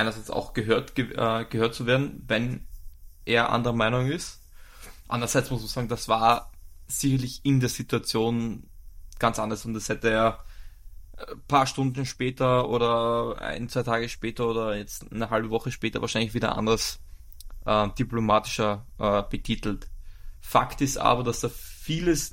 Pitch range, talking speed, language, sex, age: 110-130 Hz, 155 wpm, German, male, 20-39